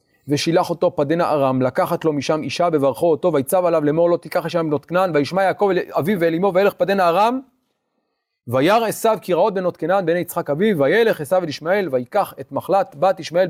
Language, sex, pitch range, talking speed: Hebrew, male, 145-205 Hz, 180 wpm